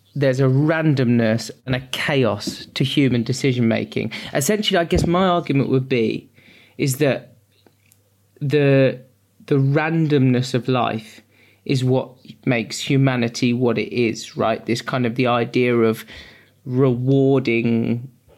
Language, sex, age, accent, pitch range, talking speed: English, male, 20-39, British, 120-140 Hz, 125 wpm